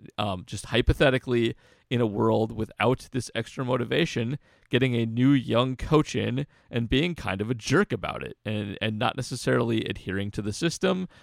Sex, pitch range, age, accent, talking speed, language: male, 110-140 Hz, 30-49, American, 170 wpm, English